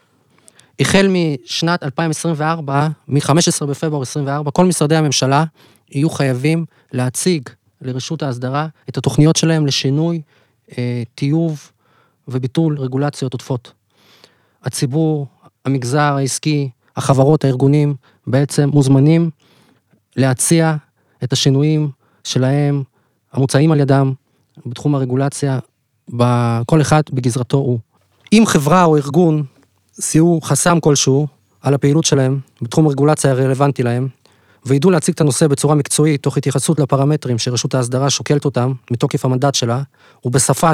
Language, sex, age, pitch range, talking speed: Hebrew, male, 30-49, 130-150 Hz, 110 wpm